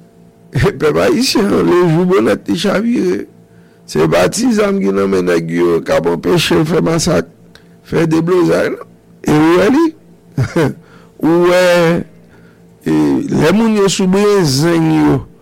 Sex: male